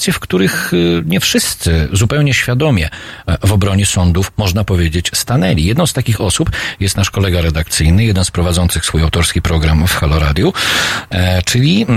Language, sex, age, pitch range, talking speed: Polish, male, 40-59, 90-115 Hz, 150 wpm